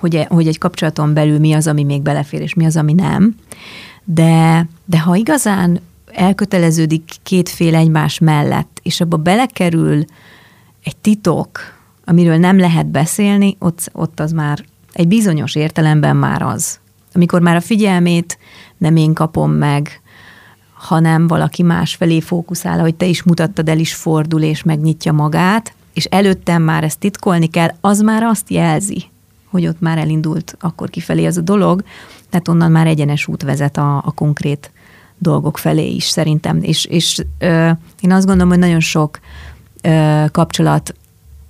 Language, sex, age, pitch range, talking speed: Hungarian, female, 30-49, 155-175 Hz, 155 wpm